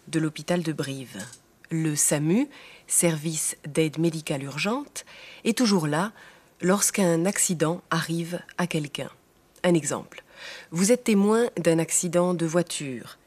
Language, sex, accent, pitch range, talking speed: German, female, French, 160-205 Hz, 120 wpm